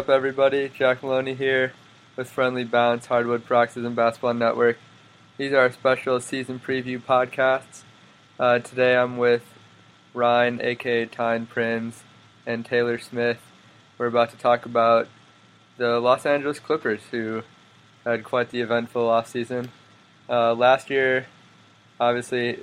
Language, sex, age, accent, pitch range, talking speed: English, male, 20-39, American, 115-125 Hz, 130 wpm